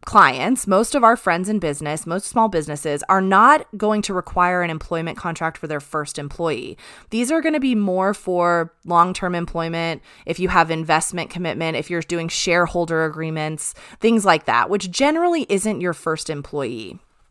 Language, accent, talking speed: English, American, 175 wpm